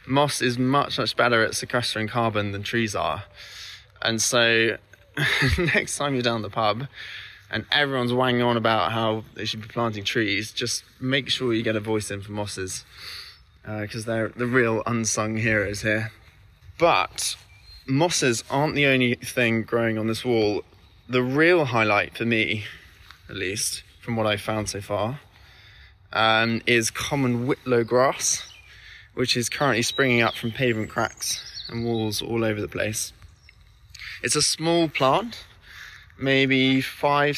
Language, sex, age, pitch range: English, male, 20-39, 110-130 Hz